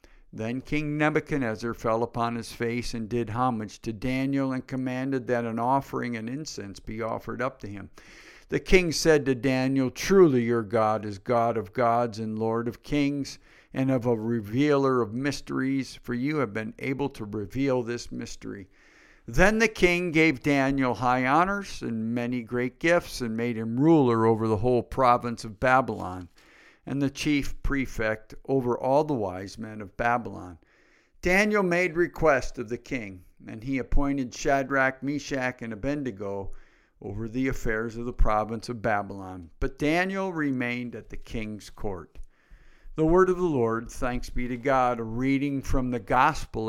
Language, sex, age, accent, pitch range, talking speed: English, male, 50-69, American, 115-140 Hz, 165 wpm